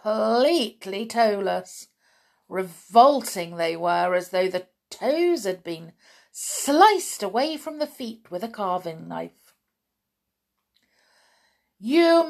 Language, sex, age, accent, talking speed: English, female, 50-69, British, 105 wpm